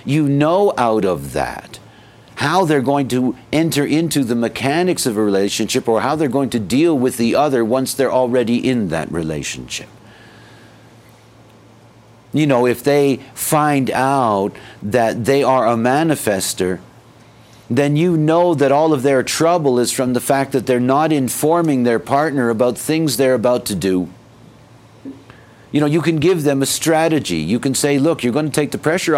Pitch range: 115-145 Hz